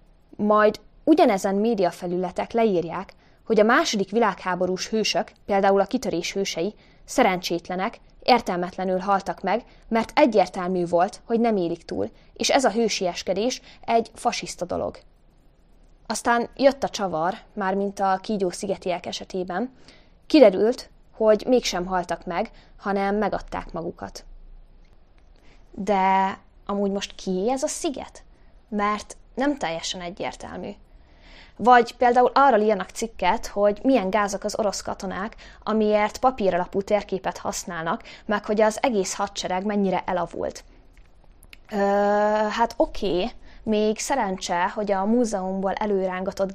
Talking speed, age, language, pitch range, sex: 115 wpm, 20-39, Hungarian, 185-225 Hz, female